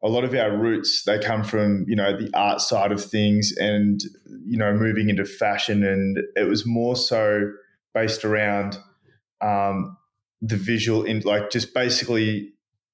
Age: 20-39